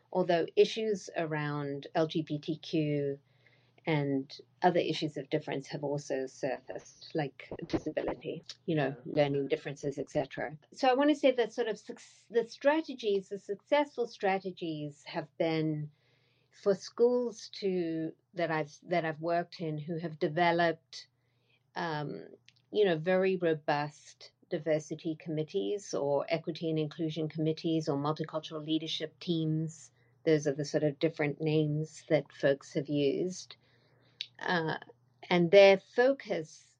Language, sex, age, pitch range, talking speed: English, female, 50-69, 145-175 Hz, 125 wpm